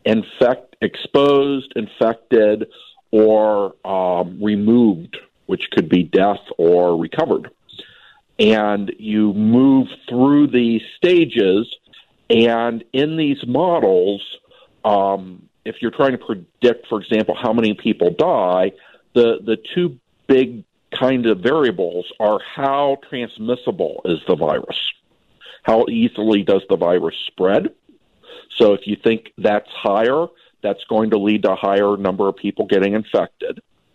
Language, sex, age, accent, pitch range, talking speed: English, male, 50-69, American, 105-135 Hz, 125 wpm